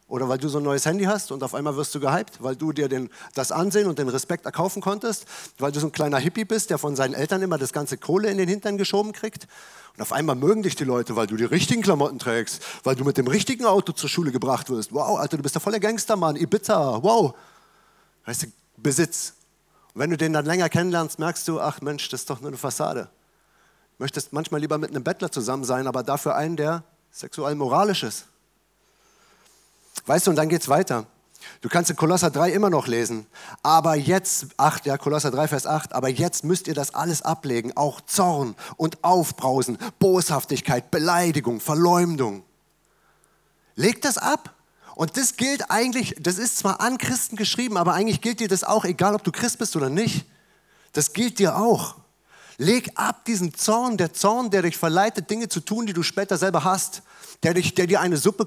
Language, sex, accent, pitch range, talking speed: German, male, German, 145-200 Hz, 205 wpm